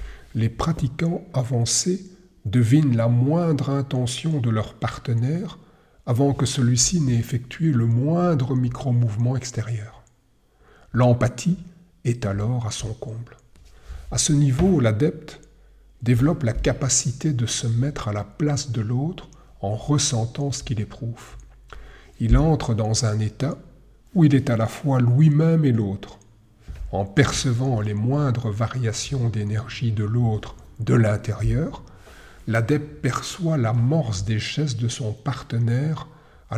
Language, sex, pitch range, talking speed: French, male, 110-140 Hz, 130 wpm